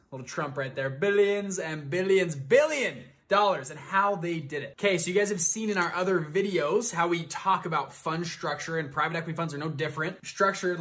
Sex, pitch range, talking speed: male, 145-185 Hz, 210 wpm